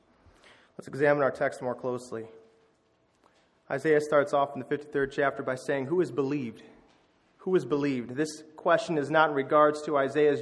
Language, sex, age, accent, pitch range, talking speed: English, male, 30-49, American, 135-160 Hz, 165 wpm